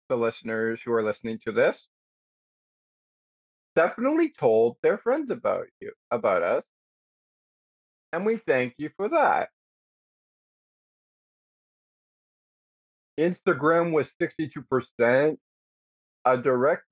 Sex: male